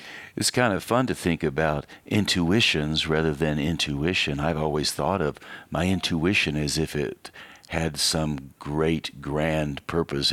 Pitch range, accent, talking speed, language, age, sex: 80-110 Hz, American, 145 wpm, English, 60-79, male